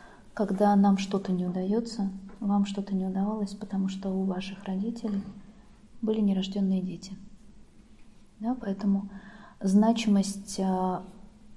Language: Russian